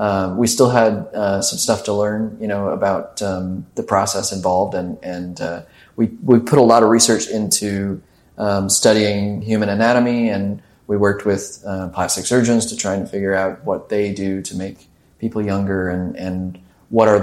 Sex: male